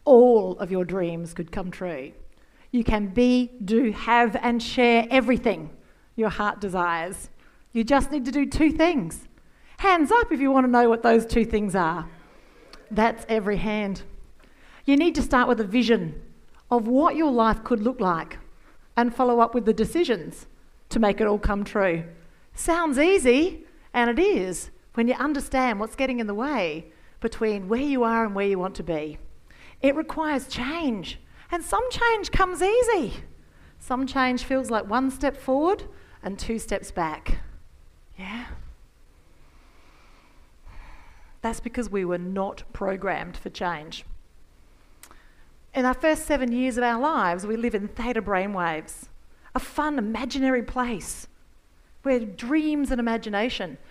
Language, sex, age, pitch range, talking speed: English, female, 40-59, 200-275 Hz, 155 wpm